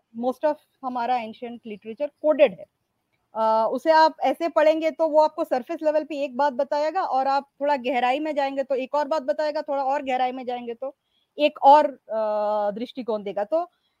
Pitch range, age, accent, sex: 235-300 Hz, 20-39, native, female